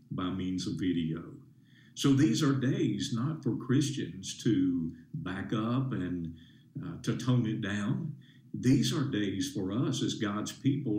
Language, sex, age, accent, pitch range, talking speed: English, male, 50-69, American, 110-135 Hz, 155 wpm